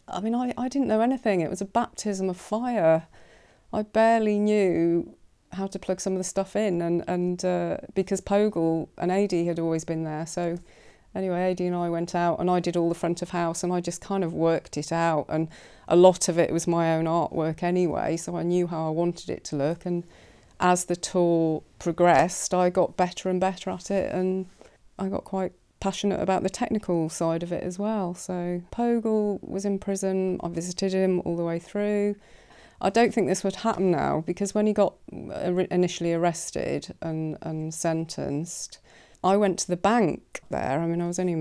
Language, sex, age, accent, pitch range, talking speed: English, female, 30-49, British, 165-195 Hz, 205 wpm